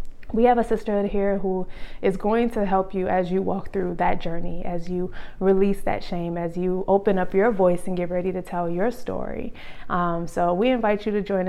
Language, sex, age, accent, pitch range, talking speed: English, female, 20-39, American, 175-215 Hz, 220 wpm